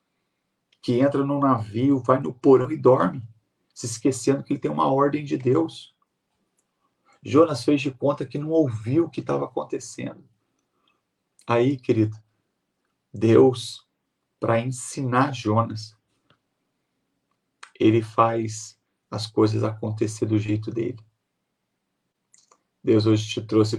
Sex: male